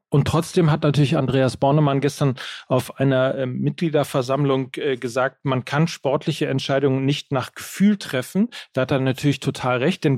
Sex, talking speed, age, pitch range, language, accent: male, 165 wpm, 40-59, 135-160 Hz, German, German